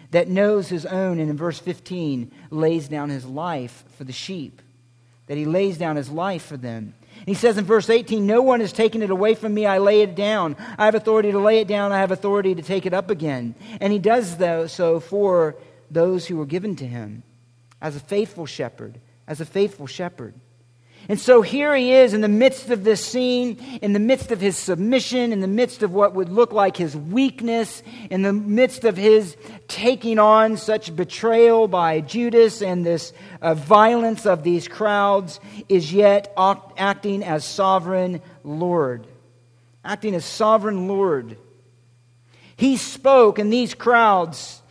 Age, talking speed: 50-69, 180 wpm